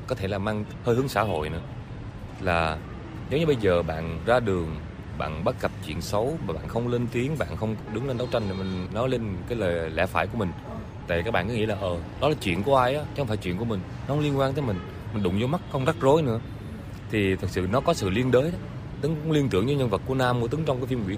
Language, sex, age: Vietnamese, male, 20-39